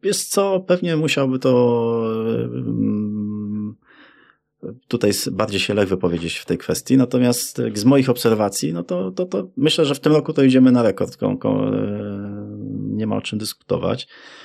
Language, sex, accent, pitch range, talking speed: Polish, male, native, 95-120 Hz, 145 wpm